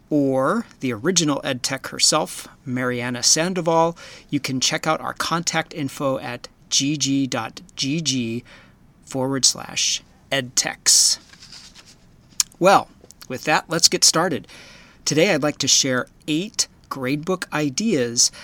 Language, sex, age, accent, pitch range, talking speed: English, male, 40-59, American, 125-150 Hz, 105 wpm